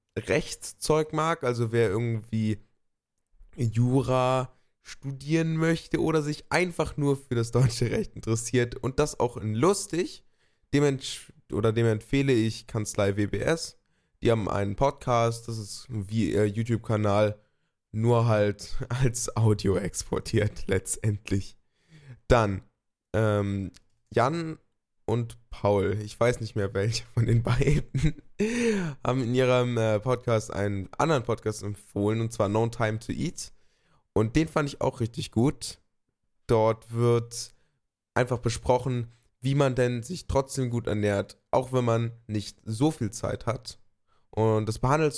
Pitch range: 105-130 Hz